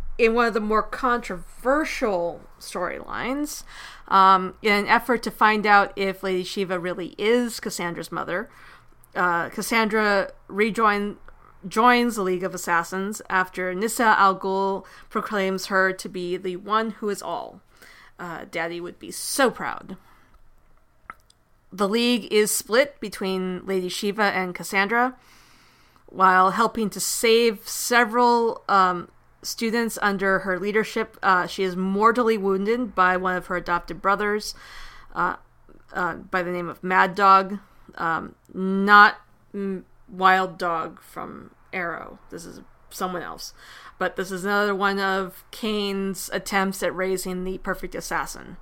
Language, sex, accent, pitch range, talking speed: English, female, American, 185-220 Hz, 135 wpm